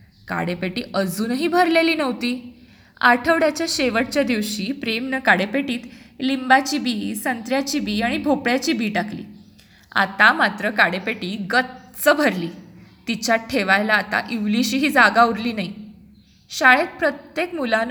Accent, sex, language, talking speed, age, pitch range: native, female, Marathi, 110 wpm, 20-39, 210-285 Hz